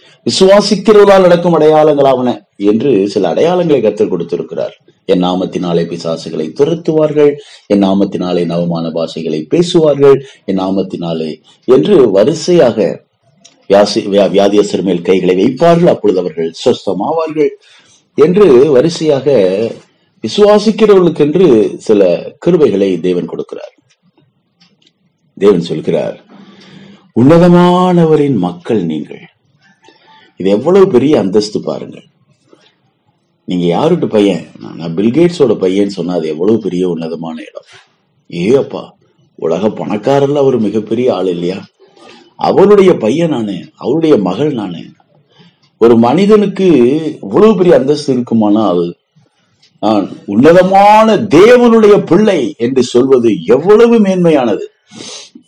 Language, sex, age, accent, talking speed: Tamil, male, 30-49, native, 95 wpm